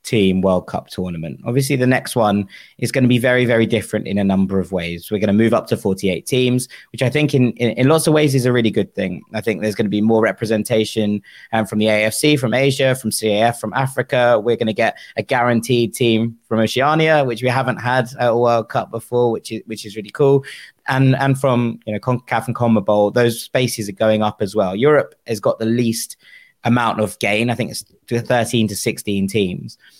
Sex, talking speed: male, 230 wpm